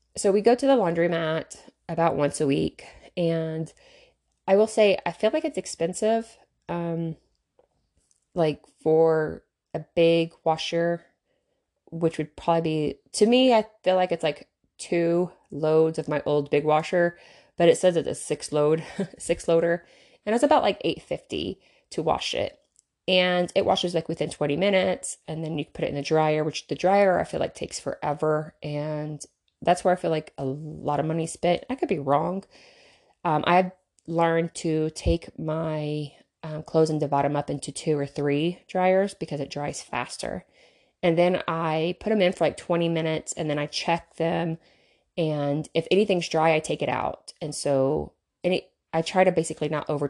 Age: 20-39